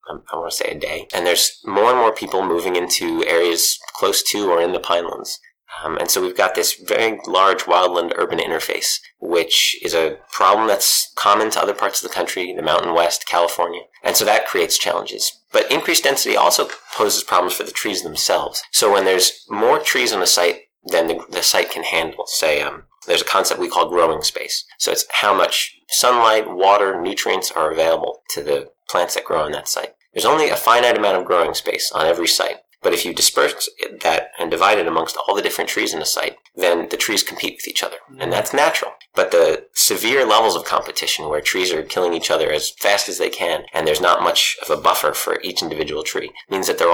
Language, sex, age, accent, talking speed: English, male, 30-49, American, 220 wpm